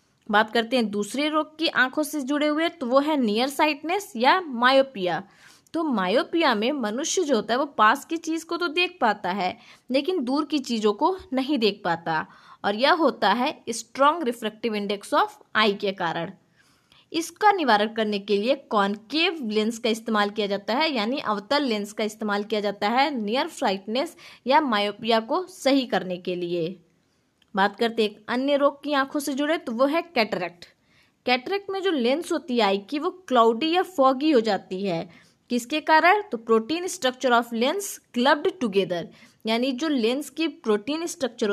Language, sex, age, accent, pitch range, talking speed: Hindi, female, 20-39, native, 215-305 Hz, 180 wpm